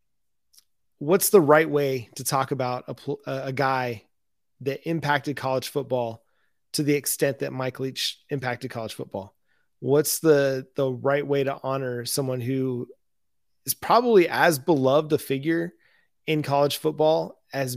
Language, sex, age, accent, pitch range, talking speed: English, male, 30-49, American, 130-155 Hz, 145 wpm